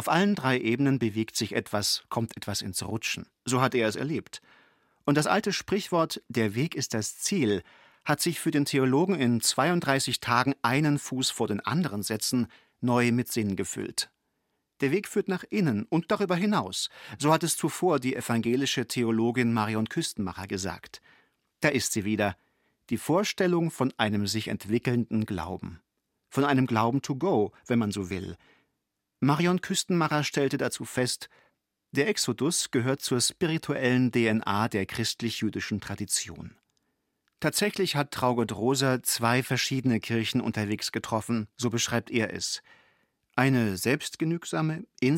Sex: male